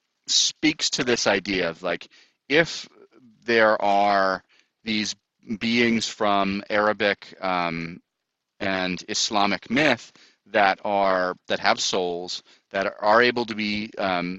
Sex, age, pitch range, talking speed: male, 30-49, 95-120 Hz, 115 wpm